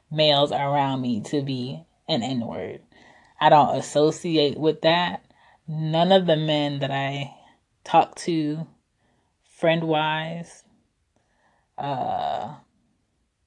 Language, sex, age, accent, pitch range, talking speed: English, female, 20-39, American, 145-175 Hz, 100 wpm